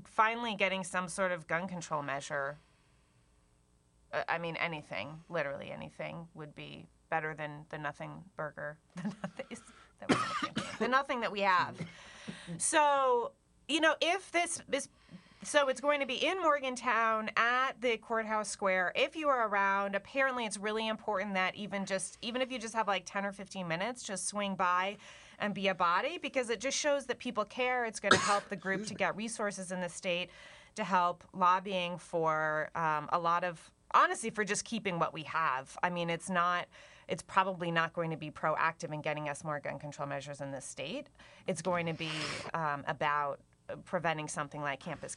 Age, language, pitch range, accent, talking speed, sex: 30-49, English, 155-225 Hz, American, 180 wpm, female